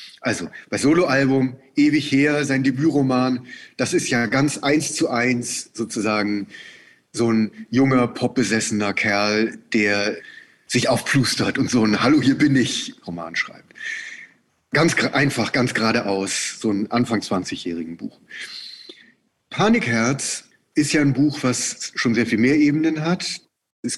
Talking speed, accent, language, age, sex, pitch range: 130 wpm, German, German, 40-59, male, 115-160 Hz